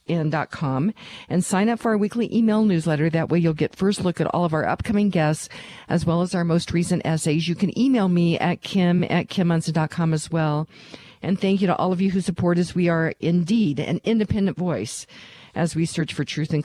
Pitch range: 155-185 Hz